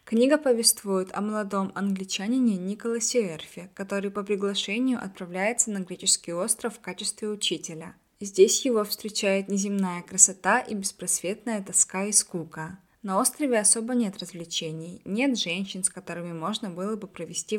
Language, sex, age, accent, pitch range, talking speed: Russian, female, 20-39, native, 180-215 Hz, 135 wpm